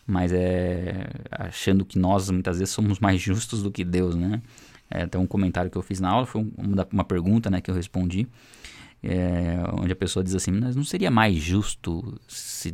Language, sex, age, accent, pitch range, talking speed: Portuguese, male, 20-39, Brazilian, 90-110 Hz, 205 wpm